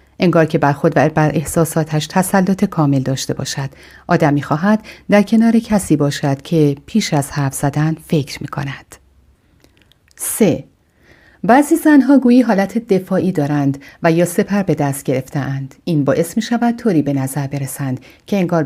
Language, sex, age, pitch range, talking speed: English, female, 40-59, 145-195 Hz, 150 wpm